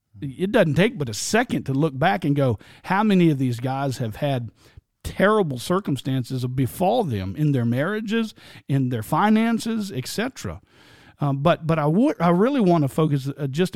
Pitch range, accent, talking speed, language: 130-185 Hz, American, 165 wpm, English